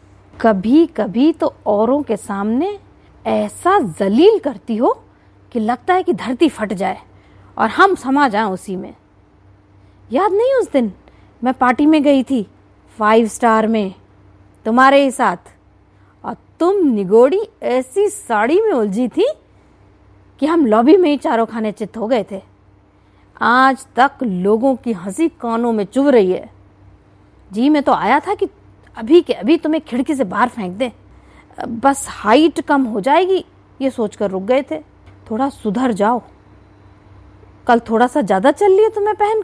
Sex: female